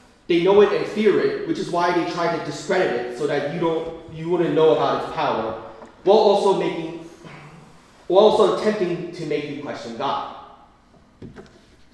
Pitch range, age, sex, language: 145-205 Hz, 30-49, male, Korean